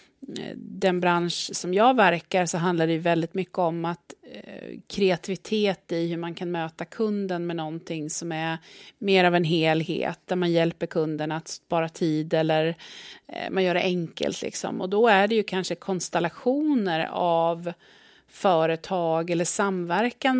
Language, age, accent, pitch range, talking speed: Swedish, 30-49, native, 170-200 Hz, 160 wpm